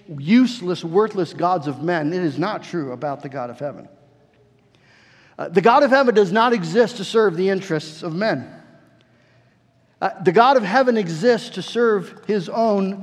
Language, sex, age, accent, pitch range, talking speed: English, male, 50-69, American, 170-250 Hz, 175 wpm